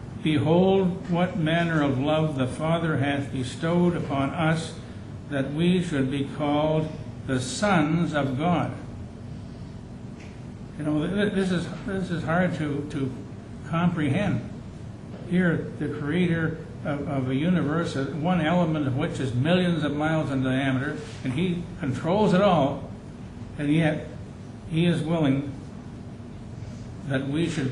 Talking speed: 130 wpm